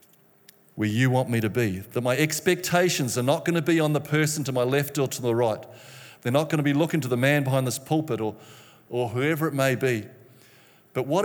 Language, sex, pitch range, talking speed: English, male, 120-150 Hz, 235 wpm